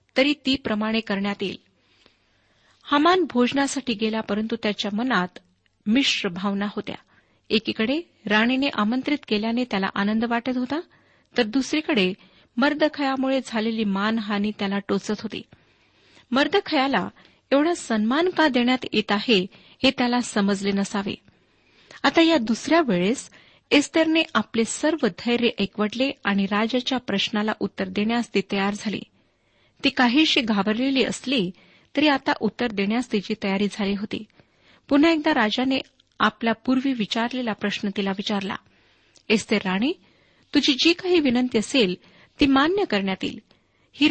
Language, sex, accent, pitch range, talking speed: Marathi, female, native, 205-275 Hz, 115 wpm